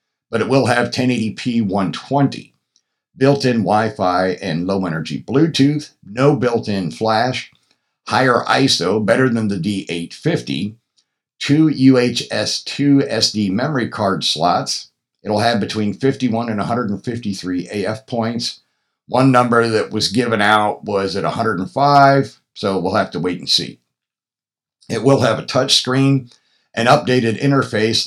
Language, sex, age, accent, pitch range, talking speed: English, male, 60-79, American, 100-130 Hz, 135 wpm